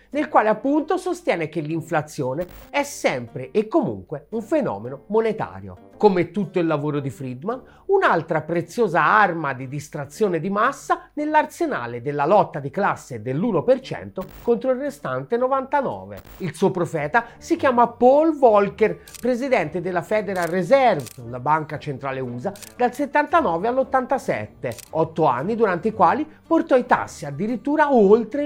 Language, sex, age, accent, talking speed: Italian, male, 40-59, native, 135 wpm